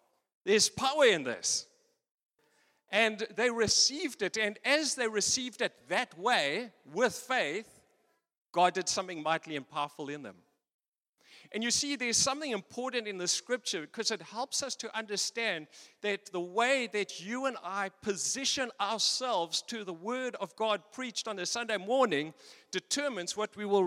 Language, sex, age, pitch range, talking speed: English, male, 50-69, 180-240 Hz, 160 wpm